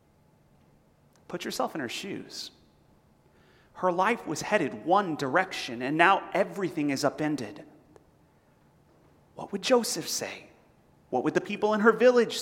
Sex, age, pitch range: male, 30-49, 160-220 Hz